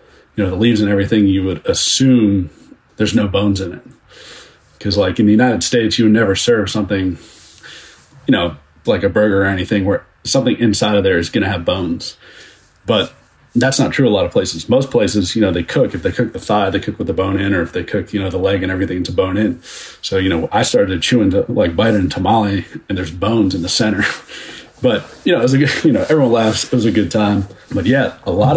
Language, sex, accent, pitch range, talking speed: English, male, American, 95-110 Hz, 240 wpm